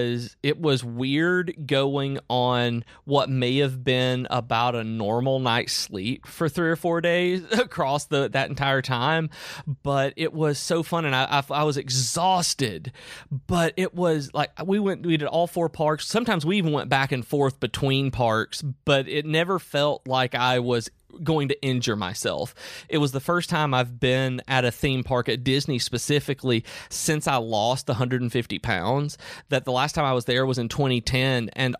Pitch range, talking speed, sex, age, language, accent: 125-155 Hz, 180 wpm, male, 30-49, English, American